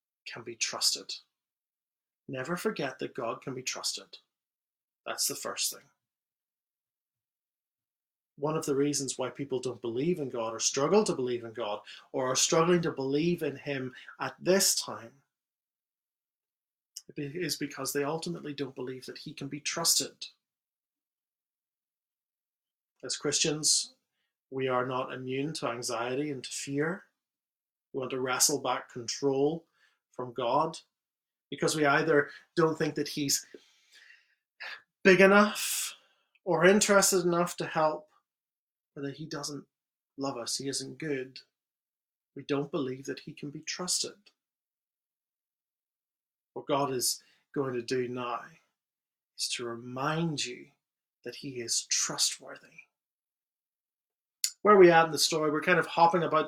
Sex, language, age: male, English, 30-49